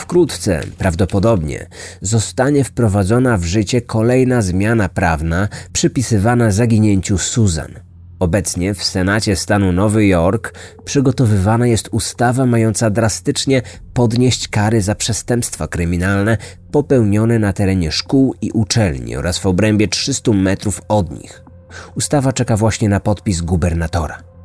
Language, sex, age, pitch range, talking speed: Polish, male, 30-49, 90-115 Hz, 115 wpm